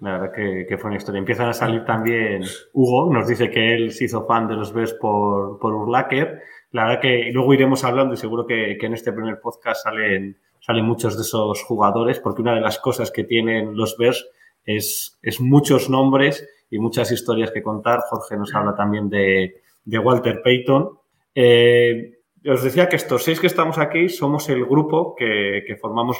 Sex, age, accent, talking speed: male, 20-39, Spanish, 195 wpm